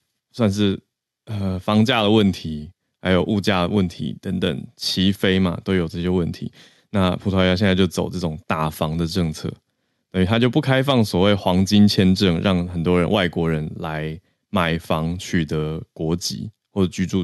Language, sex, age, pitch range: Chinese, male, 20-39, 85-105 Hz